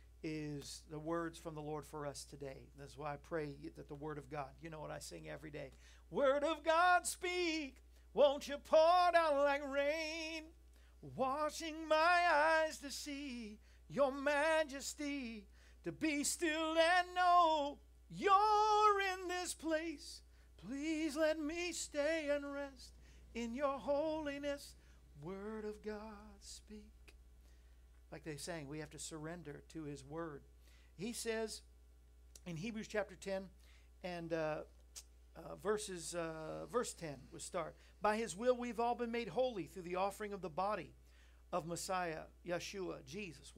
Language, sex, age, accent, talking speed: English, male, 50-69, American, 145 wpm